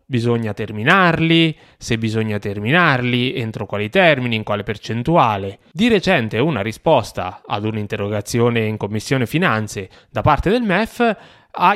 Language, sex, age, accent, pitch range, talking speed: Italian, male, 20-39, native, 105-145 Hz, 130 wpm